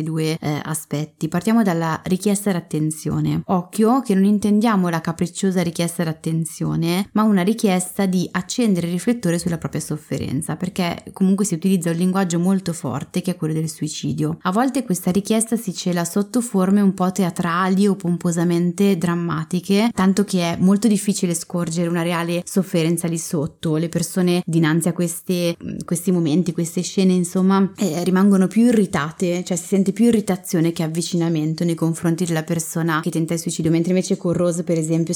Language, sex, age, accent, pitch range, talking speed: Italian, female, 20-39, native, 170-195 Hz, 165 wpm